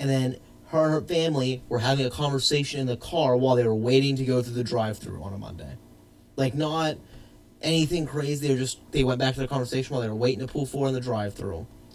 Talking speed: 240 wpm